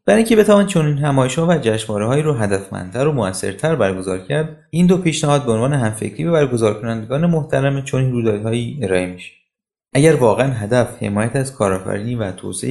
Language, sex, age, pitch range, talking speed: Persian, male, 30-49, 105-150 Hz, 175 wpm